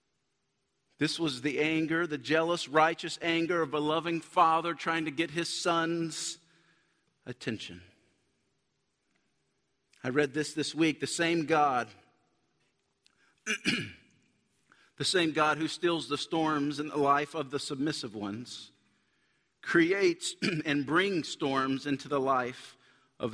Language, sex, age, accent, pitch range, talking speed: English, male, 50-69, American, 135-165 Hz, 125 wpm